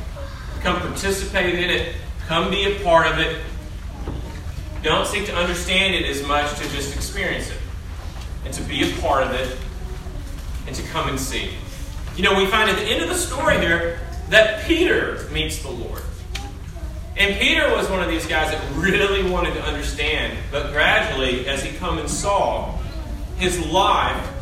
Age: 30-49